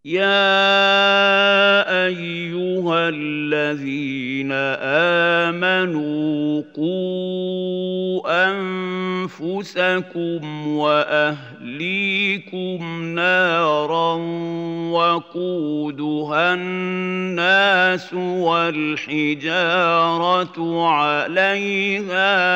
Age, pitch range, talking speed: 50-69, 150-185 Hz, 30 wpm